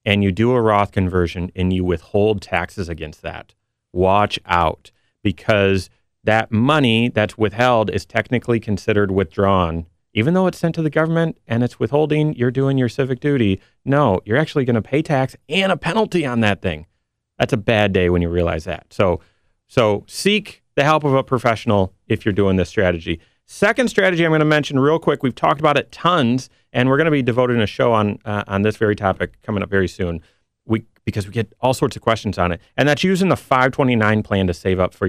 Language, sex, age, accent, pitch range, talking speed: English, male, 30-49, American, 95-130 Hz, 210 wpm